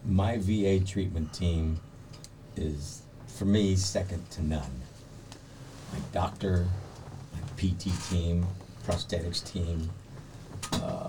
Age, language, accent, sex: 50-69, English, American, male